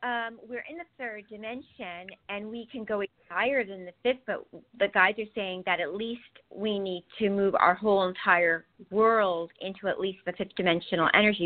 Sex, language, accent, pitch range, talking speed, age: female, English, American, 180-220 Hz, 195 wpm, 40-59